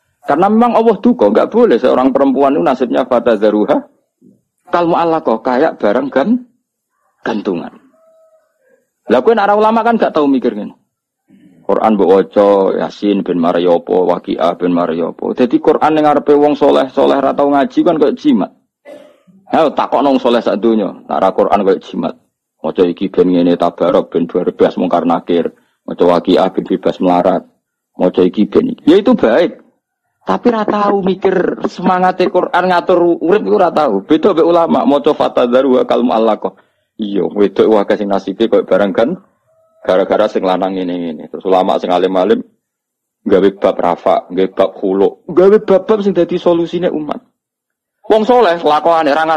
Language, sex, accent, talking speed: Indonesian, male, native, 160 wpm